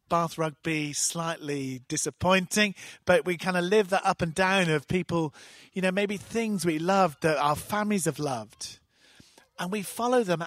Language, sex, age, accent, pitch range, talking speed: English, male, 50-69, British, 130-180 Hz, 170 wpm